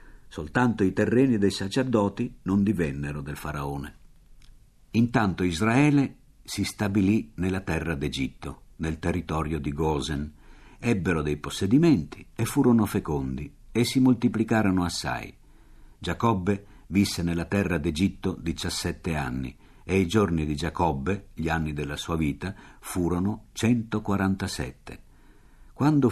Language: Italian